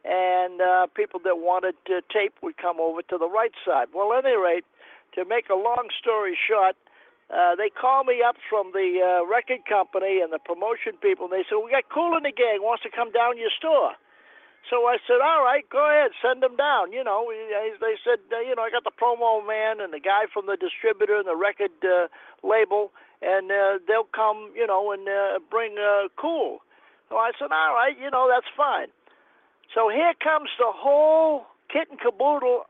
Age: 50-69